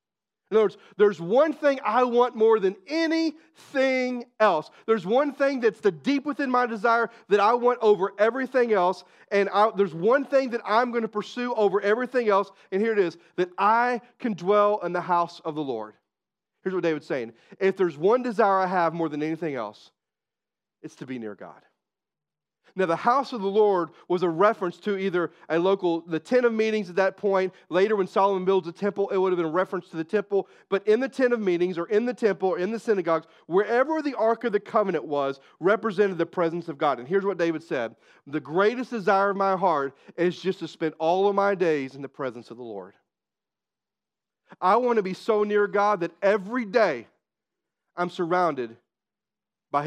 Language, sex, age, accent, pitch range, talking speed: English, male, 40-59, American, 170-225 Hz, 205 wpm